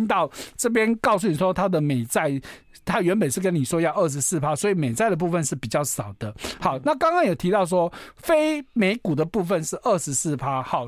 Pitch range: 150-210 Hz